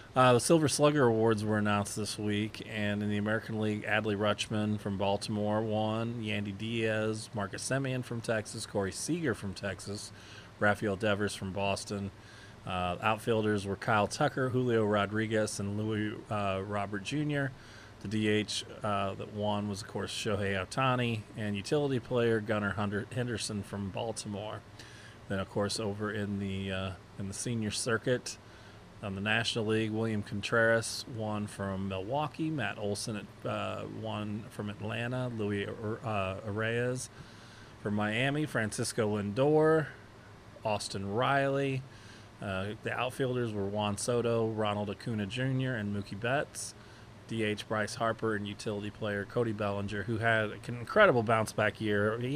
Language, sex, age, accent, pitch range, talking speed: English, male, 30-49, American, 105-115 Hz, 145 wpm